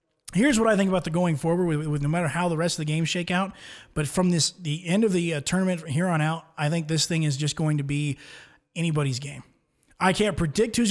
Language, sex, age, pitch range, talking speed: English, male, 20-39, 155-200 Hz, 260 wpm